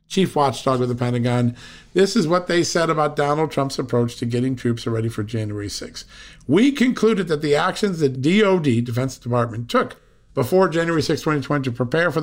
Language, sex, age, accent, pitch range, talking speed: English, male, 50-69, American, 120-160 Hz, 185 wpm